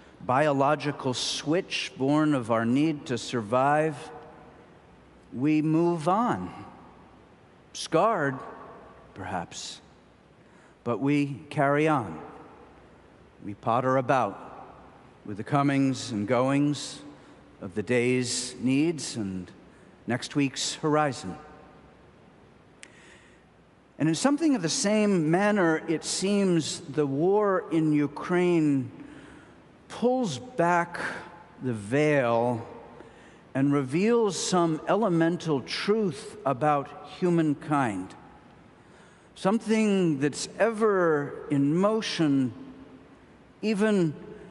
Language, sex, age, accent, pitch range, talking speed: English, male, 50-69, American, 135-175 Hz, 85 wpm